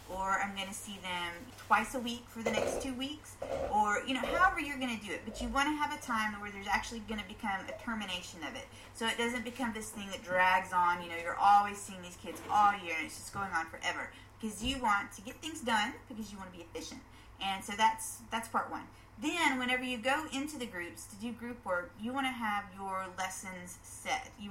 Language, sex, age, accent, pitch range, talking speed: English, female, 30-49, American, 190-250 Hz, 250 wpm